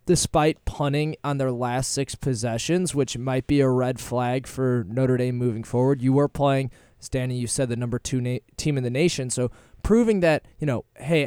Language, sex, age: English, male, 20-39